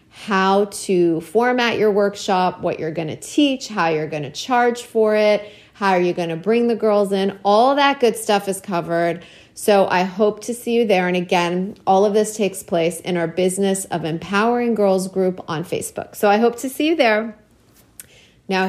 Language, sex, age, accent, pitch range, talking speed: English, female, 30-49, American, 170-230 Hz, 200 wpm